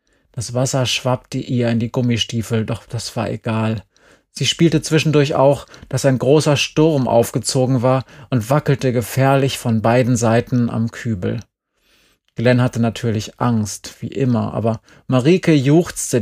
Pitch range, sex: 115-135 Hz, male